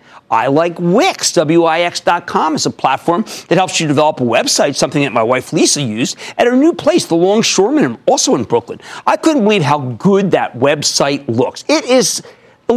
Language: English